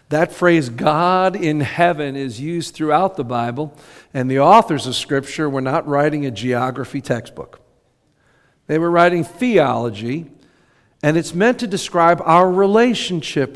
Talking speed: 140 wpm